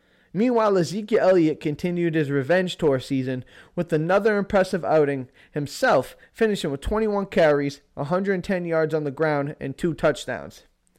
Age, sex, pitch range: 20-39, male, 150-195 Hz